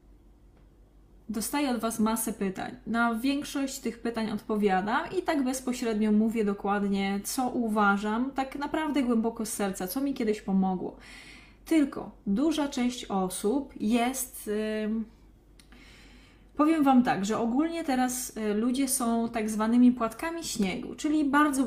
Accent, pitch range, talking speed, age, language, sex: native, 215-275 Hz, 125 wpm, 20-39, Polish, female